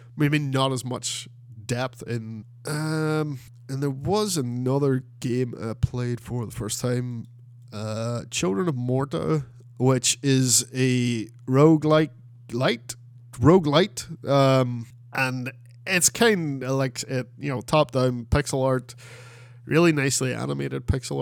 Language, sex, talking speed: English, male, 130 wpm